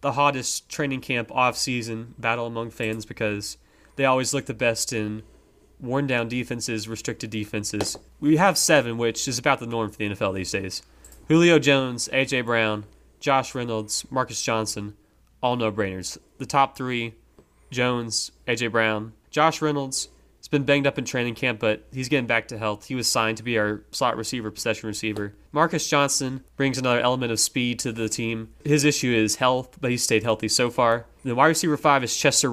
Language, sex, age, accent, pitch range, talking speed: English, male, 20-39, American, 115-135 Hz, 185 wpm